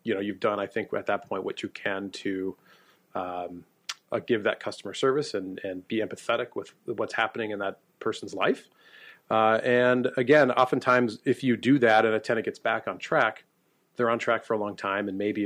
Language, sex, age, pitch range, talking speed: English, male, 30-49, 100-120 Hz, 210 wpm